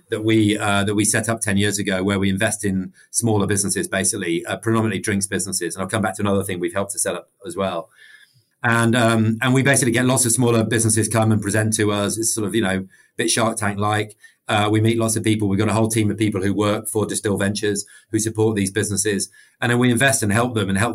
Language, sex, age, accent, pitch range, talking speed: English, male, 30-49, British, 100-115 Hz, 260 wpm